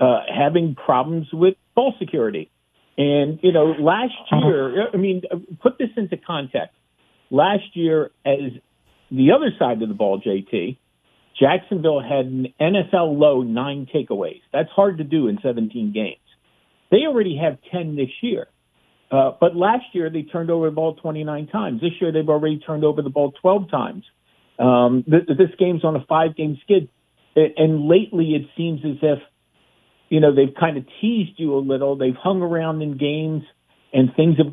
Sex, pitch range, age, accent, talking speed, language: male, 135-170 Hz, 50-69, American, 170 wpm, English